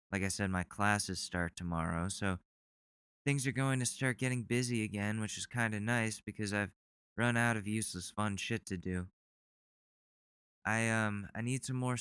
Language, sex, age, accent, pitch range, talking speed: English, male, 20-39, American, 85-110 Hz, 185 wpm